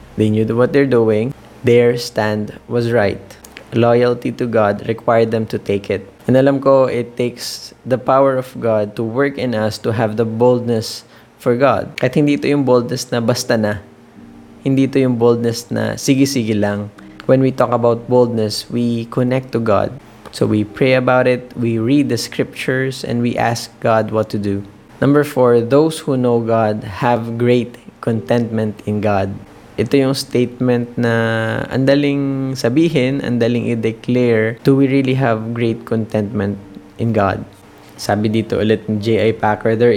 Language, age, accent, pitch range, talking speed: Filipino, 20-39, native, 110-130 Hz, 160 wpm